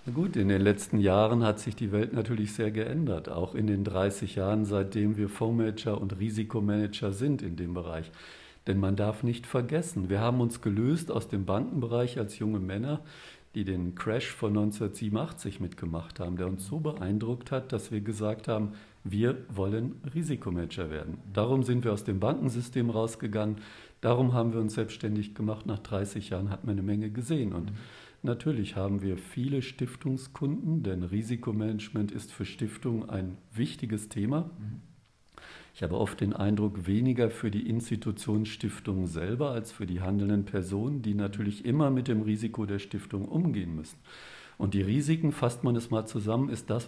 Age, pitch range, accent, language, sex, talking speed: 50-69, 100-120 Hz, German, German, male, 170 wpm